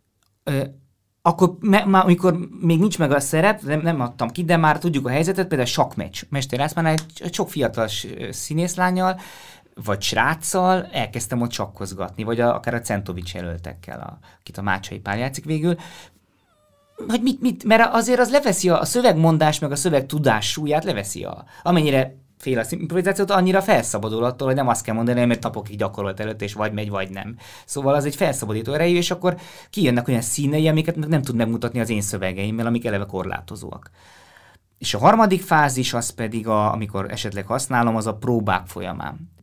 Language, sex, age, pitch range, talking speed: Hungarian, male, 20-39, 105-150 Hz, 180 wpm